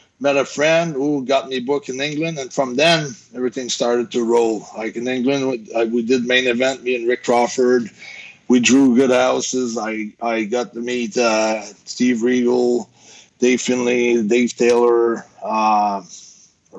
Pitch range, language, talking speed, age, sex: 115-135 Hz, English, 160 wpm, 30-49, male